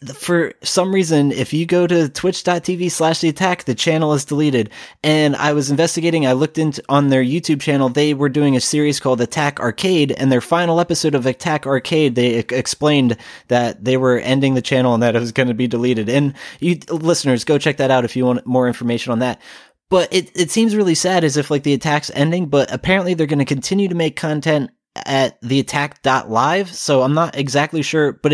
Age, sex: 20-39, male